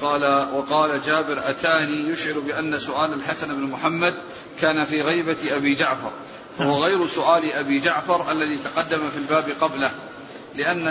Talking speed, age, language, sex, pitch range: 145 wpm, 40-59, Arabic, male, 155-180 Hz